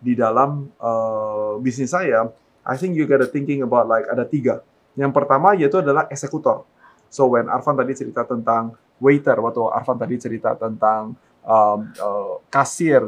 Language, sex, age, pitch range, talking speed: Indonesian, male, 20-39, 125-170 Hz, 155 wpm